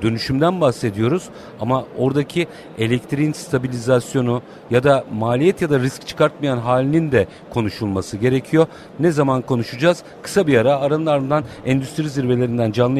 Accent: native